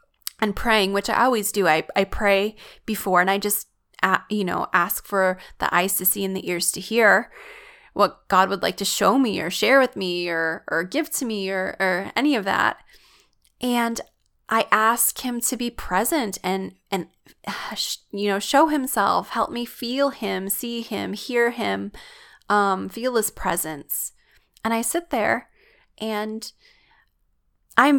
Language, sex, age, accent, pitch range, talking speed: English, female, 20-39, American, 195-230 Hz, 170 wpm